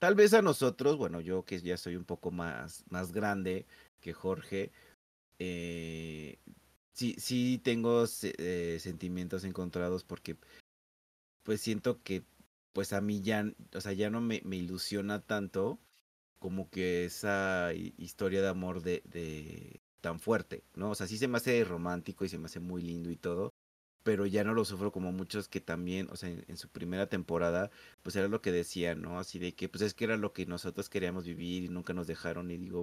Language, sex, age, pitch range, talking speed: Spanish, male, 30-49, 85-105 Hz, 190 wpm